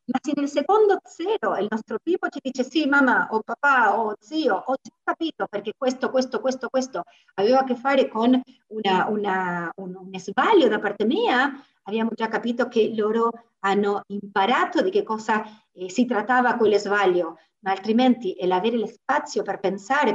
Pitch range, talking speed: 200-265 Hz, 175 wpm